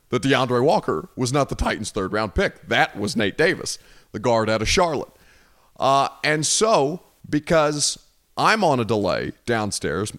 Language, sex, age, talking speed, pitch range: English, male, 30-49, 160 wpm, 110-145 Hz